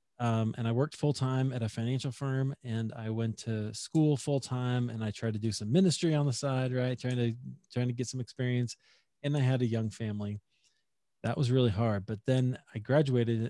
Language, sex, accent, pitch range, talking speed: English, male, American, 115-130 Hz, 220 wpm